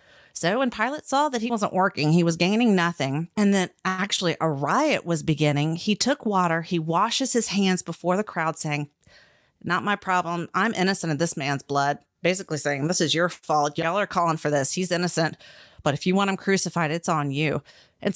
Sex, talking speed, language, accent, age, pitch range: female, 205 wpm, English, American, 30-49, 160-210 Hz